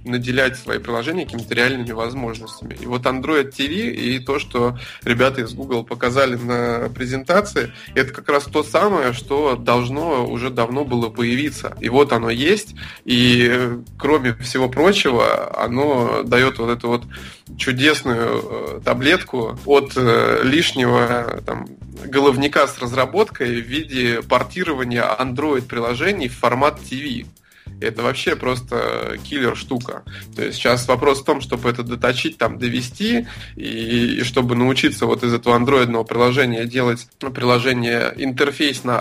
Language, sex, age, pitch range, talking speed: Russian, male, 20-39, 120-135 Hz, 130 wpm